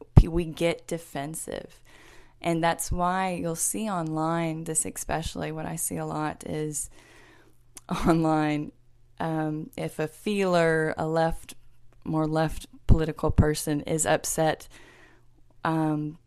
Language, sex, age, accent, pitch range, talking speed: English, female, 10-29, American, 150-165 Hz, 115 wpm